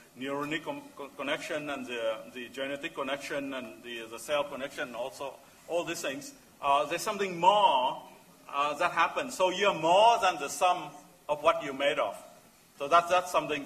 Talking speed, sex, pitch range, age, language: 165 wpm, male, 130-185 Hz, 50-69, English